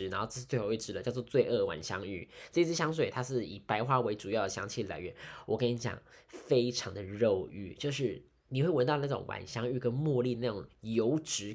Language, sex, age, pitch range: Chinese, male, 10-29, 110-150 Hz